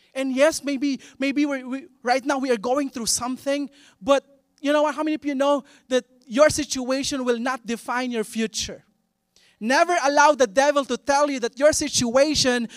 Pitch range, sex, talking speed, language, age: 195-295 Hz, male, 185 wpm, English, 20-39